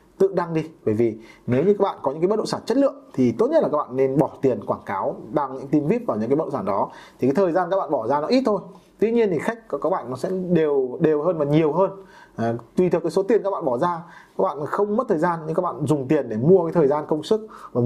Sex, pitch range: male, 140-195 Hz